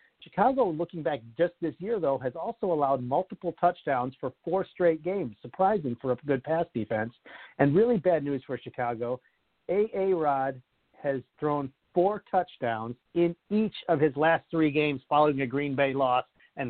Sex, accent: male, American